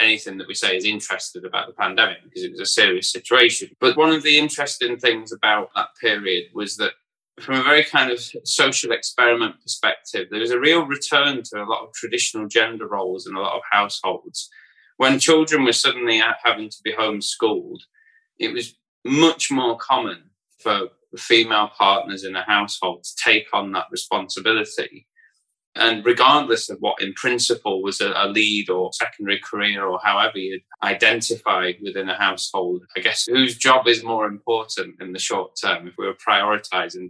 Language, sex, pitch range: English, male, 110-165 Hz